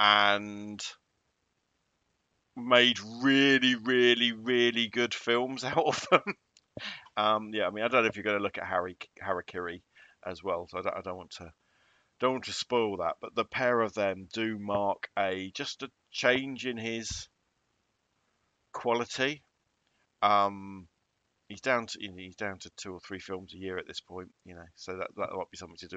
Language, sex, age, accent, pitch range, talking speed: English, male, 40-59, British, 95-115 Hz, 185 wpm